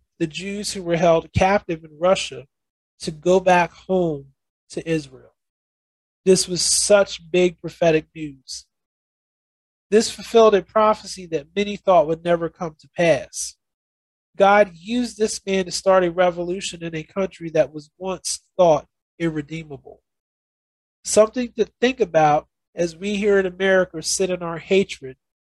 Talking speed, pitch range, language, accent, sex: 145 wpm, 155-190 Hz, English, American, male